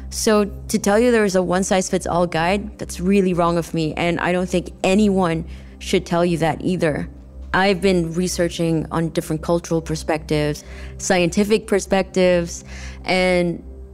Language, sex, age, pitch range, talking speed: English, female, 20-39, 150-180 Hz, 160 wpm